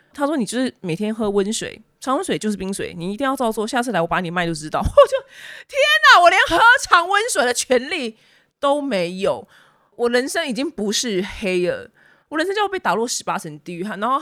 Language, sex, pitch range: Chinese, female, 190-285 Hz